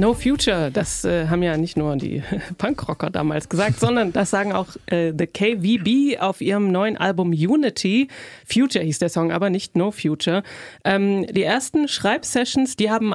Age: 30-49